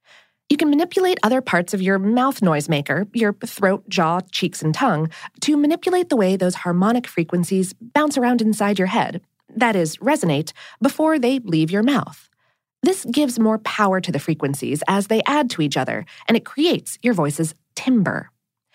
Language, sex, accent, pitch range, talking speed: English, female, American, 180-275 Hz, 175 wpm